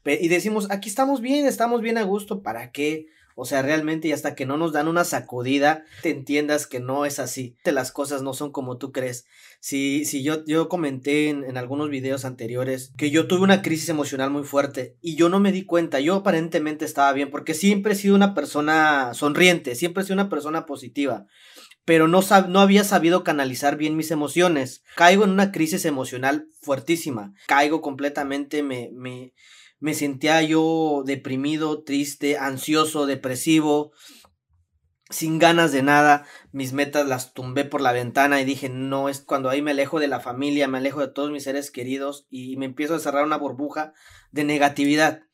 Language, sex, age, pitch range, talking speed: Spanish, male, 20-39, 135-160 Hz, 185 wpm